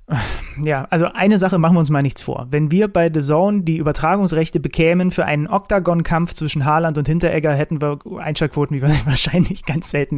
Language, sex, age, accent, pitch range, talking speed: German, male, 30-49, German, 150-180 Hz, 205 wpm